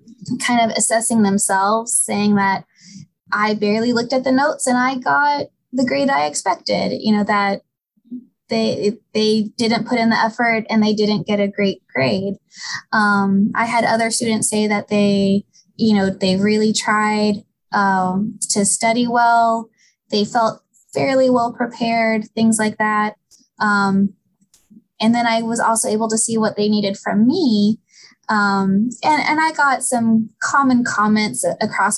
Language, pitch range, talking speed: English, 200-230 Hz, 160 wpm